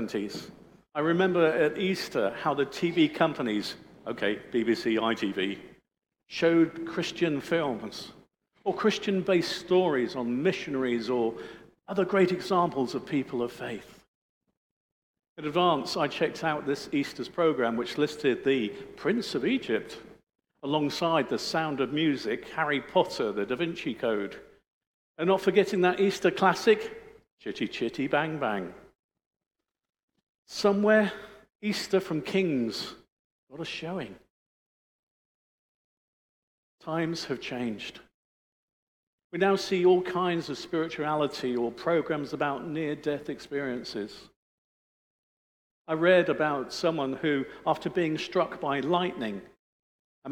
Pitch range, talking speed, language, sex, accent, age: 140-185 Hz, 115 wpm, English, male, British, 50-69